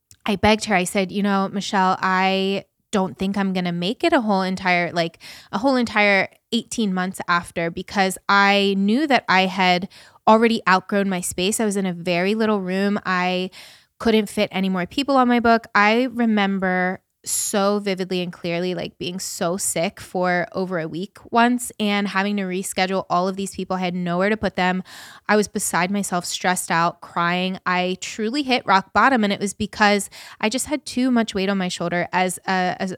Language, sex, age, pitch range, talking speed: English, female, 20-39, 180-215 Hz, 200 wpm